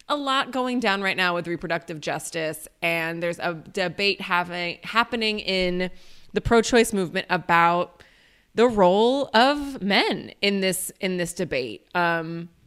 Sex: female